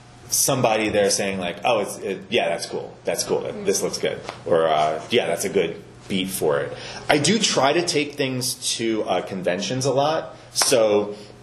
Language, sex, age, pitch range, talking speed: English, male, 30-49, 95-135 Hz, 190 wpm